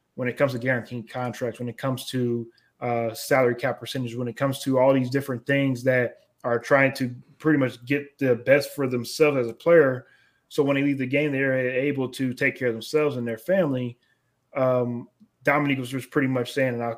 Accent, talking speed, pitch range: American, 215 wpm, 125-145 Hz